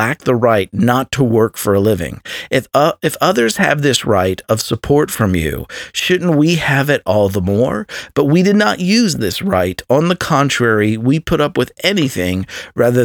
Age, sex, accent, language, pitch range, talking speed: 50-69, male, American, English, 105-140 Hz, 200 wpm